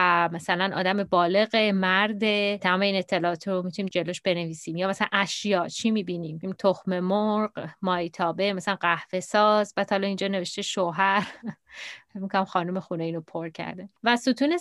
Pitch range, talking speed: 180-210 Hz, 140 wpm